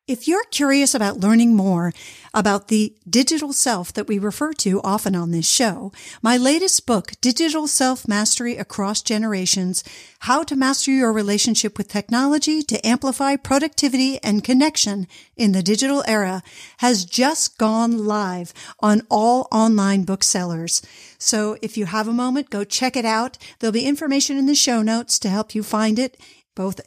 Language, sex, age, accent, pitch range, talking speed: English, female, 50-69, American, 195-260 Hz, 160 wpm